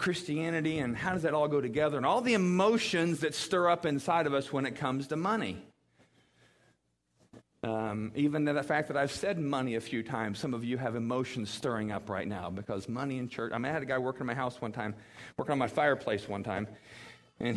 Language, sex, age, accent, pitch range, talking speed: English, male, 40-59, American, 110-155 Hz, 225 wpm